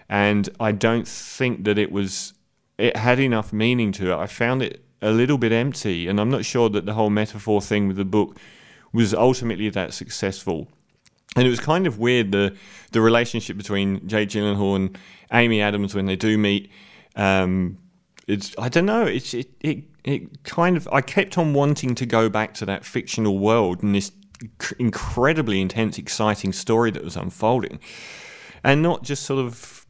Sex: male